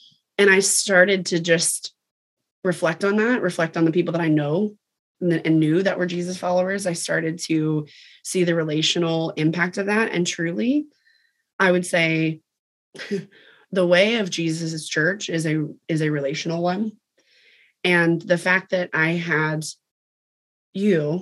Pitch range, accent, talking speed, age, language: 160-180 Hz, American, 155 wpm, 20-39, English